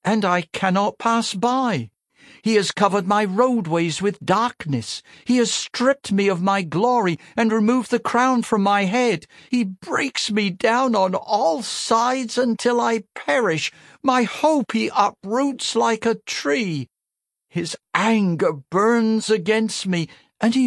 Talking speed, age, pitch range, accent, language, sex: 145 wpm, 60-79, 160-230 Hz, British, English, male